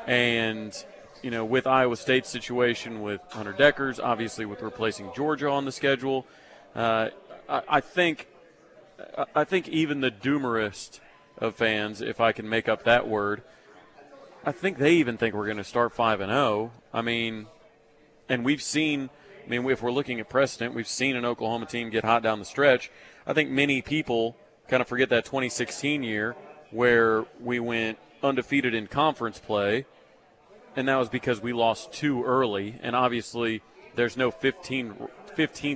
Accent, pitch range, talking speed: American, 110-140 Hz, 170 wpm